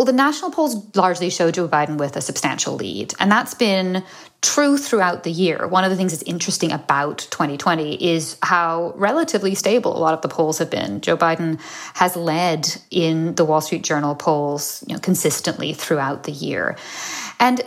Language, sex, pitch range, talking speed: English, female, 160-205 Hz, 180 wpm